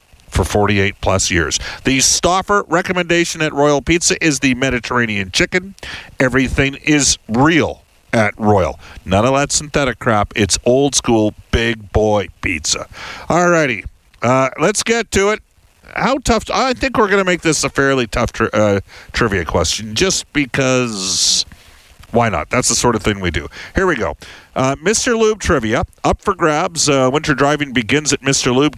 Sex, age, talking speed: male, 50-69, 160 wpm